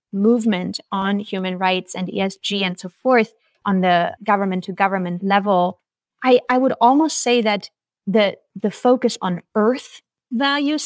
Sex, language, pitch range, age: female, English, 195-230 Hz, 30-49